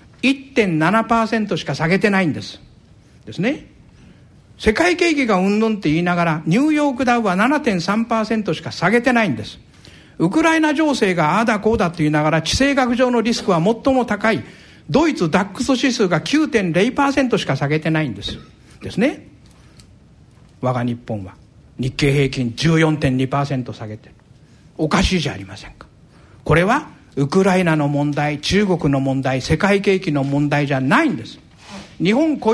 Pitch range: 150-230 Hz